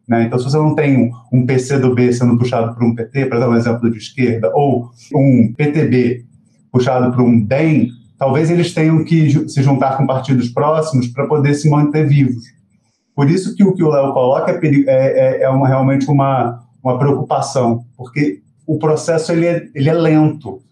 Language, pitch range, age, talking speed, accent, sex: Portuguese, 125-155 Hz, 20-39, 190 wpm, Brazilian, male